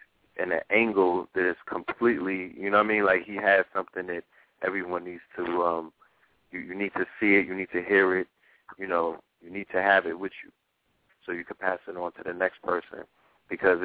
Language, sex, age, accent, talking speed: English, male, 30-49, American, 215 wpm